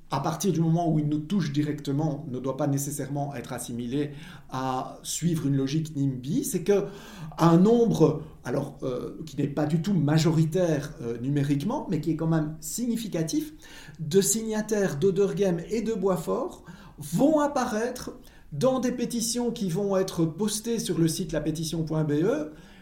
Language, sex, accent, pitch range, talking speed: French, male, French, 155-225 Hz, 155 wpm